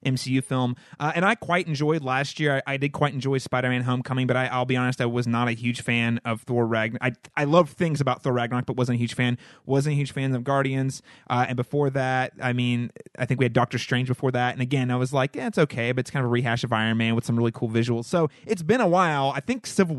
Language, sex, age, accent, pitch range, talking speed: English, male, 30-49, American, 125-160 Hz, 275 wpm